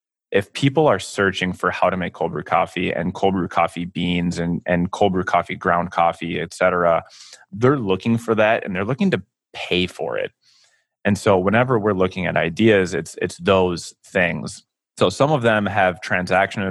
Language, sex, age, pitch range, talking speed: English, male, 20-39, 90-110 Hz, 185 wpm